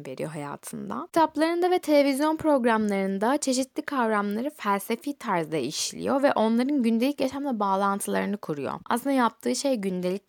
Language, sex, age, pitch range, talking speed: Turkish, female, 10-29, 180-255 Hz, 125 wpm